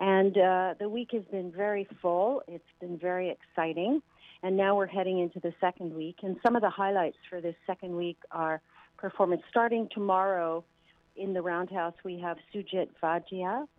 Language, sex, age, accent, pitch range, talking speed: English, female, 50-69, American, 165-195 Hz, 175 wpm